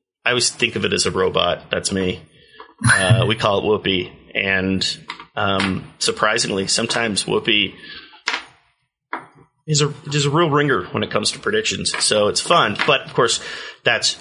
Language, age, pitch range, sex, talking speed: English, 30-49, 110-145 Hz, male, 155 wpm